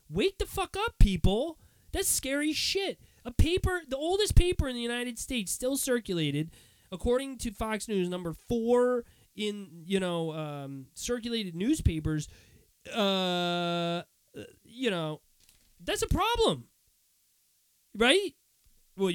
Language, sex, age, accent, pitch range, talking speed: English, male, 20-39, American, 140-210 Hz, 120 wpm